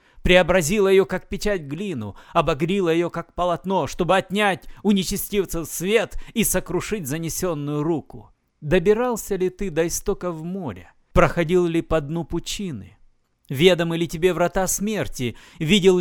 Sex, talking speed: male, 130 wpm